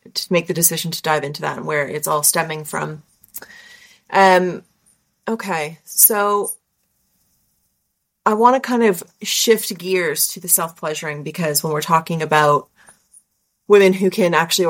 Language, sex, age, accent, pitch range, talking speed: English, female, 30-49, American, 155-190 Hz, 145 wpm